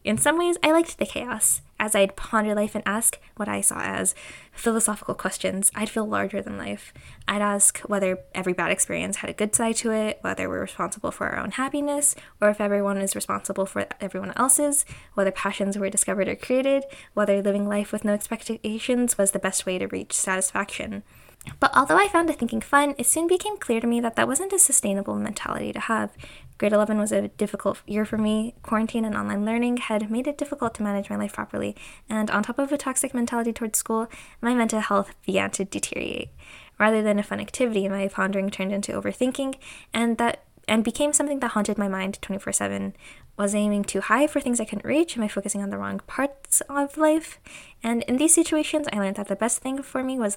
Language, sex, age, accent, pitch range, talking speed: English, female, 10-29, American, 195-245 Hz, 210 wpm